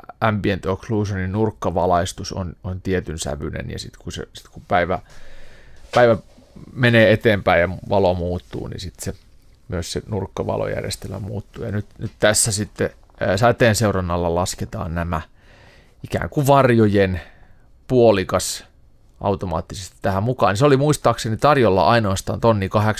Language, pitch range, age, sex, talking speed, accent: Finnish, 90-110 Hz, 30-49, male, 130 wpm, native